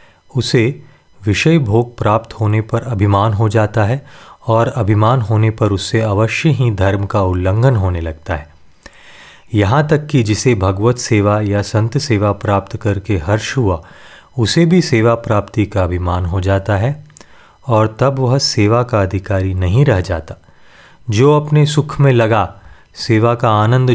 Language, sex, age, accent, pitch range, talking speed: Hindi, male, 30-49, native, 100-130 Hz, 155 wpm